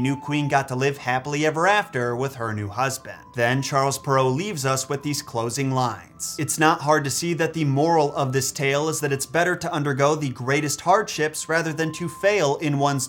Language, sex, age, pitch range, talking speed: English, male, 30-49, 130-160 Hz, 220 wpm